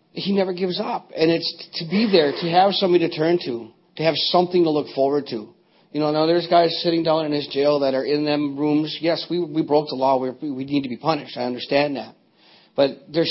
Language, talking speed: English, 245 wpm